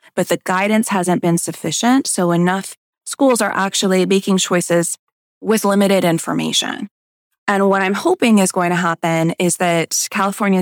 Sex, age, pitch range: female, 20-39, 170-195 Hz